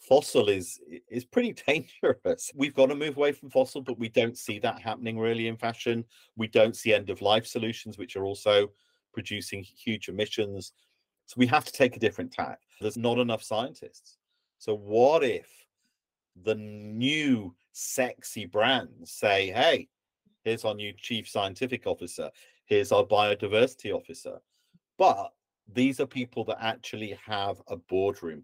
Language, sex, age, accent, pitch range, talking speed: English, male, 40-59, British, 105-140 Hz, 155 wpm